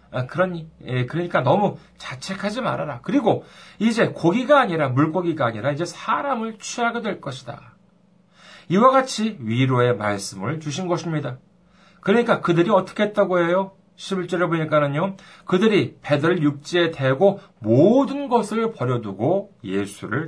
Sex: male